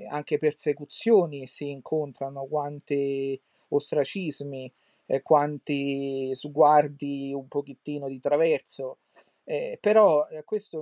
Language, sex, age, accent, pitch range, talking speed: Italian, male, 40-59, native, 140-165 Hz, 85 wpm